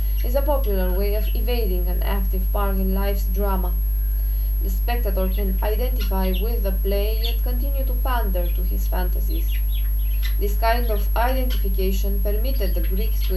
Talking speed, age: 155 wpm, 20-39